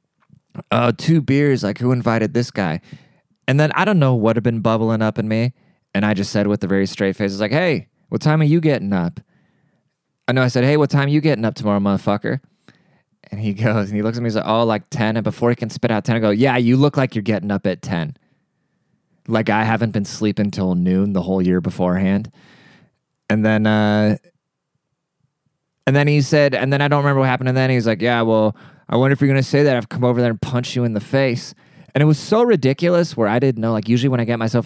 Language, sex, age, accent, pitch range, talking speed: English, male, 20-39, American, 105-145 Hz, 250 wpm